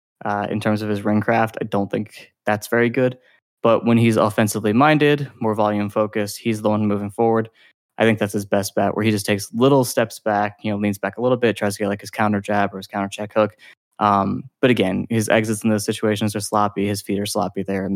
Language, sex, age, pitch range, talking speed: English, male, 20-39, 105-115 Hz, 245 wpm